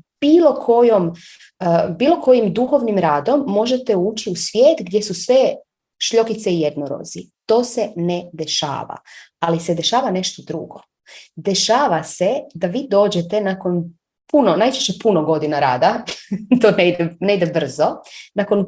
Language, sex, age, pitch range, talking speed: Croatian, female, 30-49, 165-220 Hz, 140 wpm